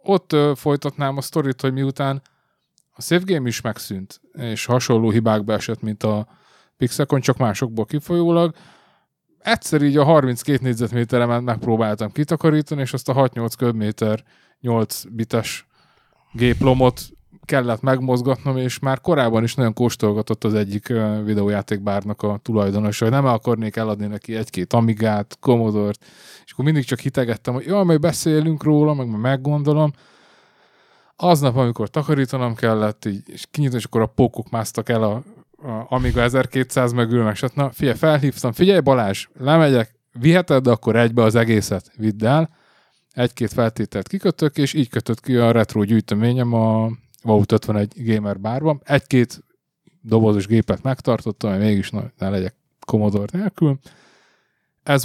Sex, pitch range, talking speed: male, 110-140 Hz, 140 wpm